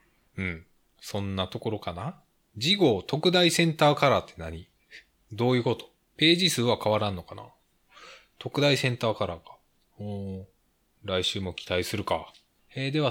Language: Japanese